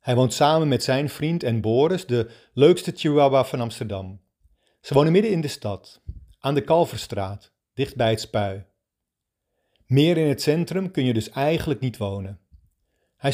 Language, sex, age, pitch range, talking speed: Dutch, male, 40-59, 105-155 Hz, 165 wpm